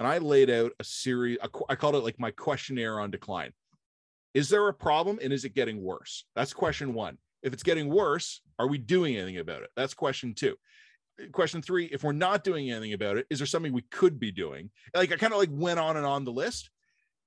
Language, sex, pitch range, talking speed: English, male, 125-180 Hz, 230 wpm